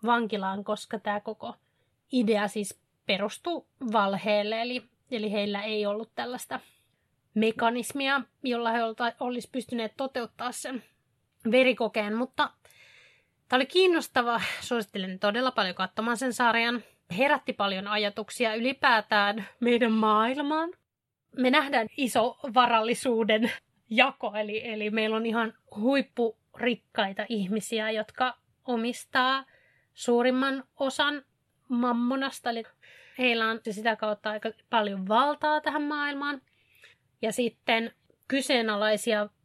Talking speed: 105 wpm